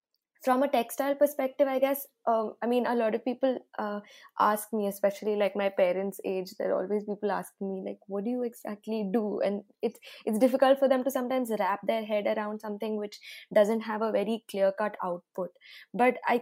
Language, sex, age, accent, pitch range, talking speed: English, female, 20-39, Indian, 200-230 Hz, 200 wpm